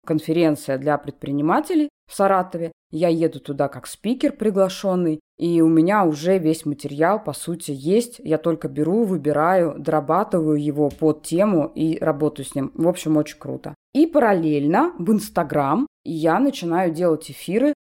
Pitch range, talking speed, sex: 150-195 Hz, 150 wpm, female